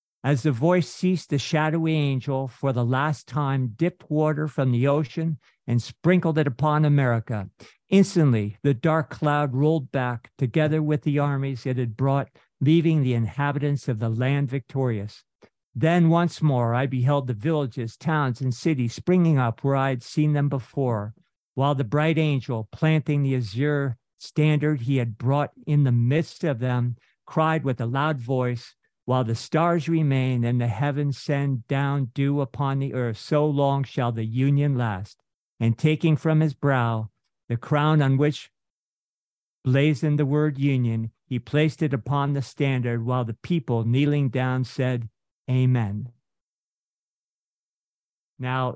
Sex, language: male, English